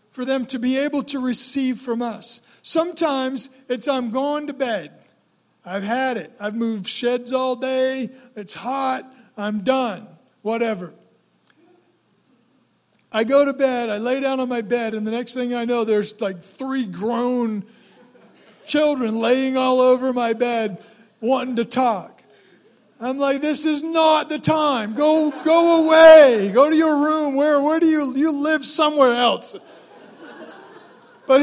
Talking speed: 155 wpm